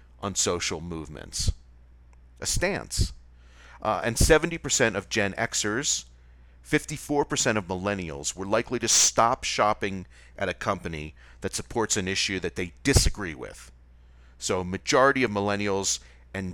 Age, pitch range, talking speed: 40-59, 70-110 Hz, 130 wpm